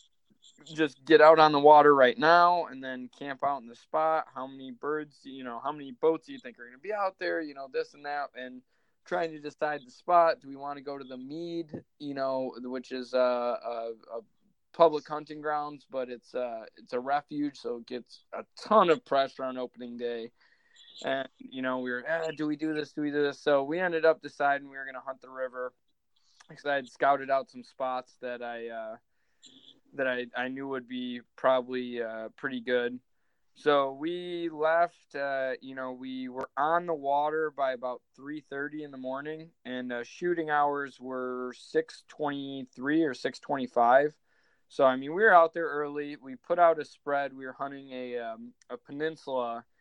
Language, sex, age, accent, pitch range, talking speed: English, male, 20-39, American, 125-155 Hz, 200 wpm